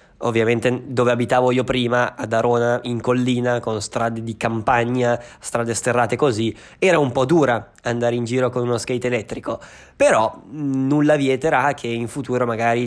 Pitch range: 120-140 Hz